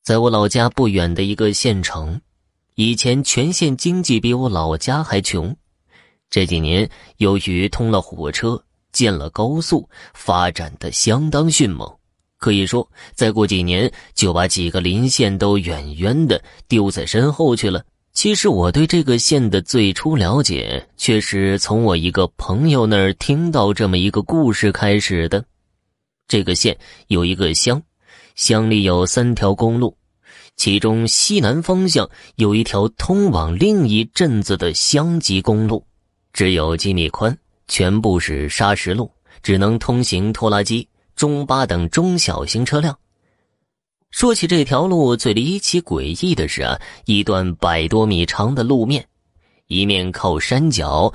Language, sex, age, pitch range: Chinese, male, 20-39, 95-130 Hz